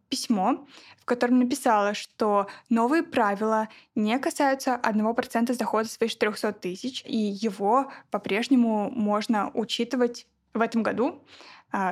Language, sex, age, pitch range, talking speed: Russian, female, 20-39, 205-245 Hz, 120 wpm